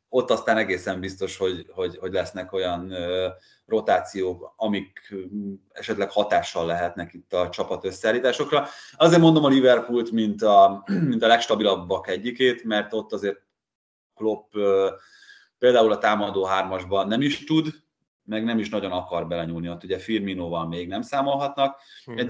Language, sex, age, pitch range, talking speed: Hungarian, male, 30-49, 90-125 Hz, 145 wpm